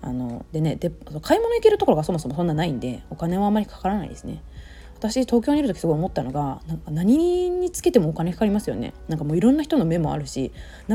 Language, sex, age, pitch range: Japanese, female, 20-39, 145-230 Hz